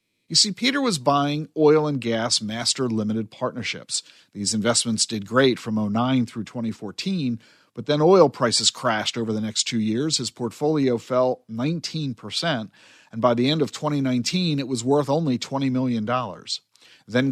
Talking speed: 160 wpm